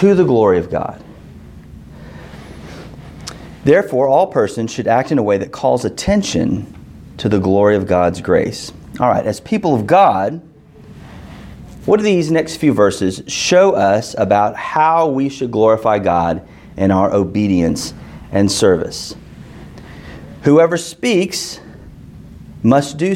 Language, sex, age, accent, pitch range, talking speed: English, male, 30-49, American, 100-150 Hz, 130 wpm